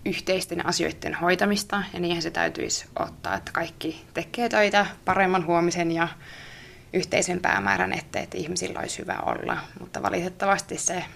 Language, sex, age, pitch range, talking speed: Finnish, female, 20-39, 165-195 Hz, 140 wpm